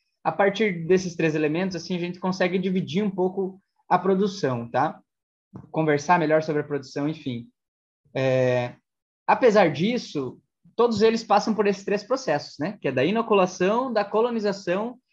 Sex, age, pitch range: male, 20-39, 155-205 Hz